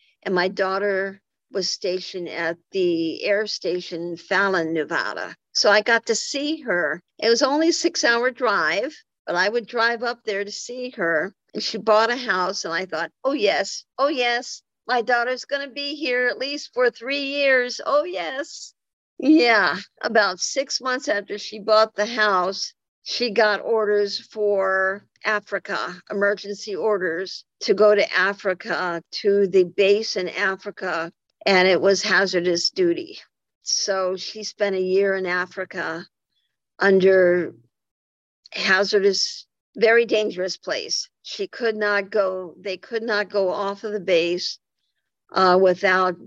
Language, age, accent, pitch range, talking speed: English, 50-69, American, 185-235 Hz, 145 wpm